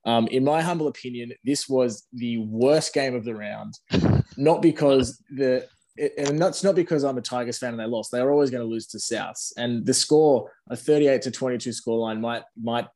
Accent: Australian